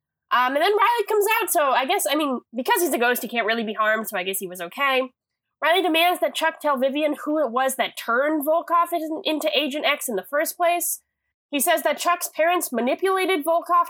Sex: female